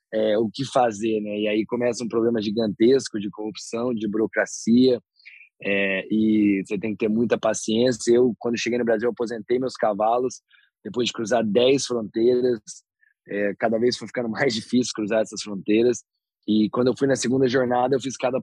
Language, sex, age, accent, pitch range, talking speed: Portuguese, male, 20-39, Brazilian, 110-120 Hz, 180 wpm